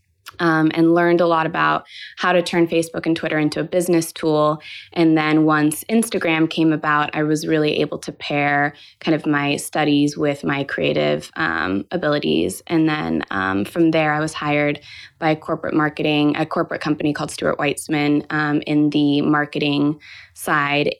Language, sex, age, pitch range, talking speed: English, female, 20-39, 145-165 Hz, 170 wpm